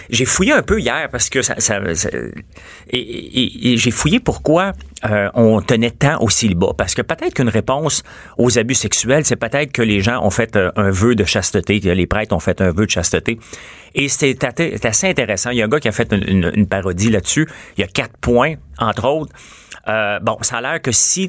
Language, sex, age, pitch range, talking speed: French, male, 40-59, 105-130 Hz, 230 wpm